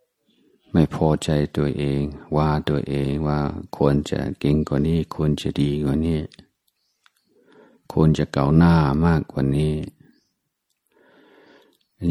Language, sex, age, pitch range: Thai, male, 60-79, 75-85 Hz